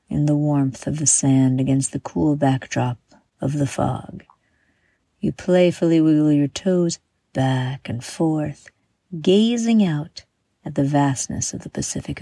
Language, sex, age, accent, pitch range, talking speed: English, female, 50-69, American, 145-190 Hz, 140 wpm